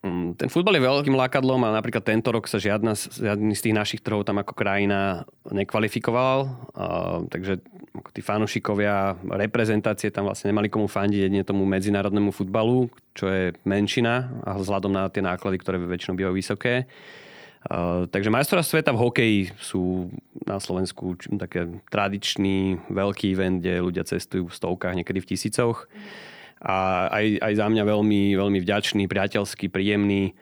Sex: male